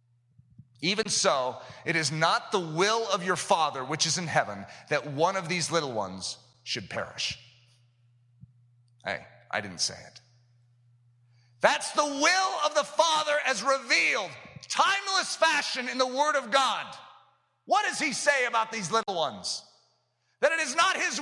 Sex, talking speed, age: male, 155 wpm, 40-59